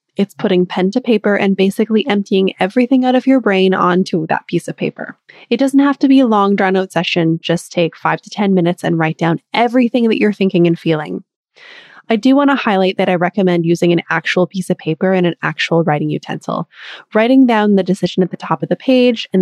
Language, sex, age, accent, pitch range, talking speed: English, female, 20-39, American, 175-225 Hz, 225 wpm